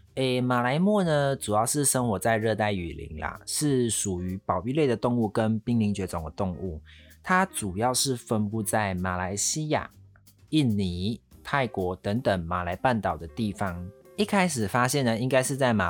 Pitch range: 95-145 Hz